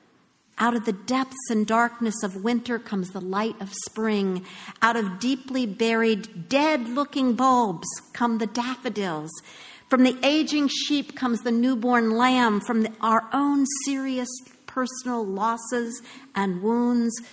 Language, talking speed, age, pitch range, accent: English, 135 wpm, 50-69, 185-235 Hz, American